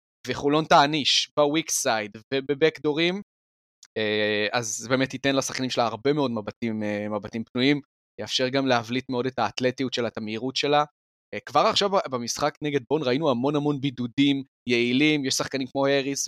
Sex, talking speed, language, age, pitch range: male, 145 wpm, Hebrew, 20-39, 115-140 Hz